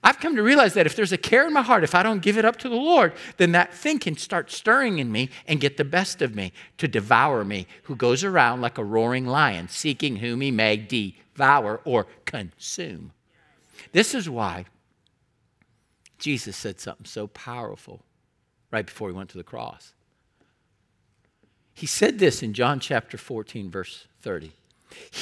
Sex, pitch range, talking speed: male, 110-185 Hz, 180 wpm